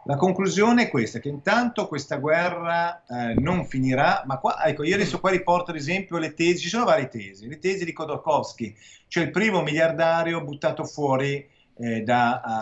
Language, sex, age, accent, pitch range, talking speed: Italian, male, 40-59, native, 120-165 Hz, 180 wpm